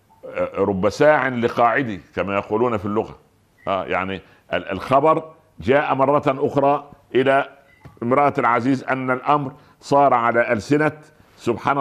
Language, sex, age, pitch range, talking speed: Arabic, male, 60-79, 100-135 Hz, 110 wpm